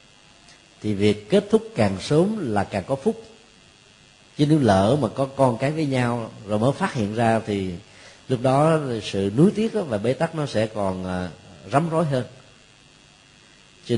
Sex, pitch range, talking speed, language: male, 105-140 Hz, 170 wpm, Vietnamese